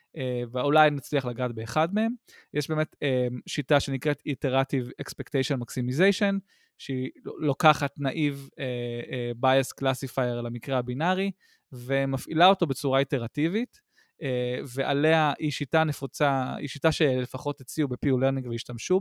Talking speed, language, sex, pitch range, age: 120 wpm, Hebrew, male, 125-155 Hz, 20-39